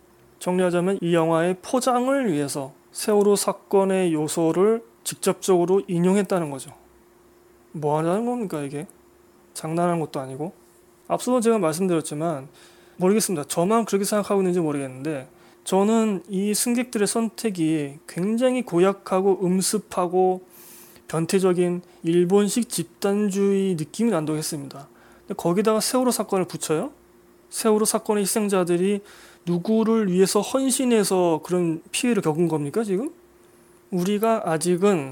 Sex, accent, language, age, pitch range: male, native, Korean, 20-39, 160-205 Hz